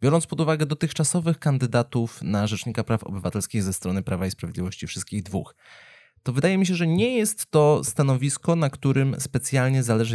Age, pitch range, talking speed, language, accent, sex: 30-49, 105-145 Hz, 170 wpm, Polish, native, male